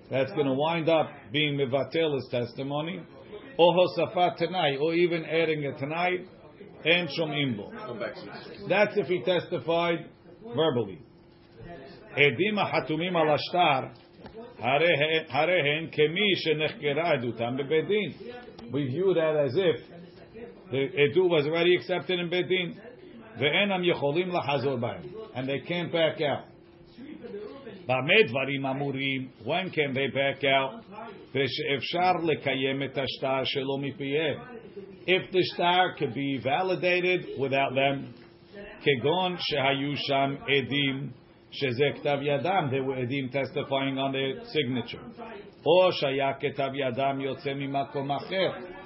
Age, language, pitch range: 50-69, English, 135-175 Hz